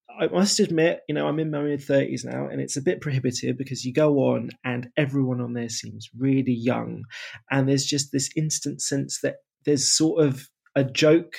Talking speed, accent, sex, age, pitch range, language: 205 wpm, British, male, 20-39, 115-140 Hz, English